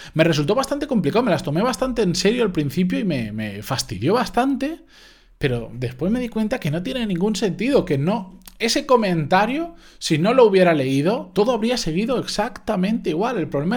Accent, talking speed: Spanish, 190 wpm